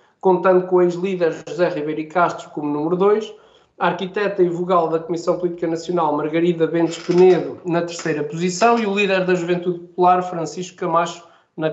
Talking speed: 170 wpm